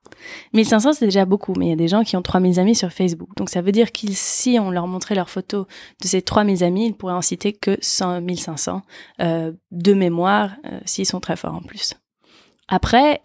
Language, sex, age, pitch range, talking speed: French, female, 20-39, 175-205 Hz, 220 wpm